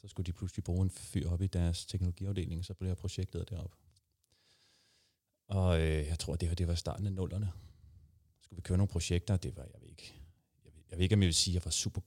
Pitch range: 90-105 Hz